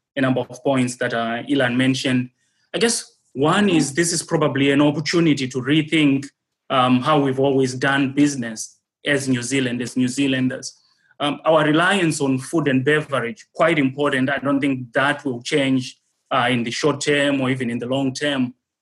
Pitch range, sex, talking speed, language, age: 130-150 Hz, male, 180 wpm, English, 30-49